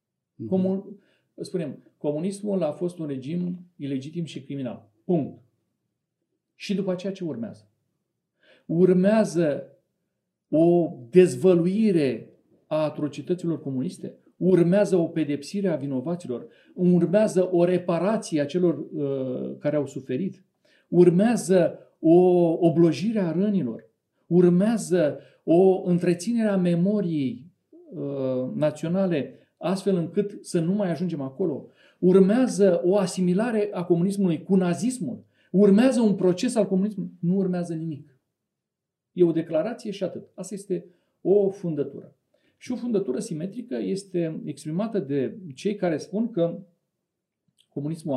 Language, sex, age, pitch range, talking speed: Romanian, male, 40-59, 155-200 Hz, 115 wpm